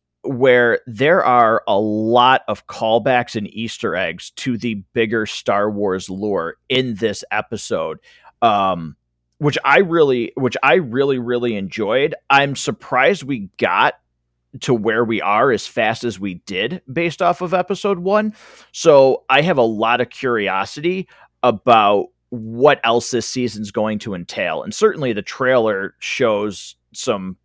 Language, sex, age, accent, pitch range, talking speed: English, male, 30-49, American, 100-145 Hz, 145 wpm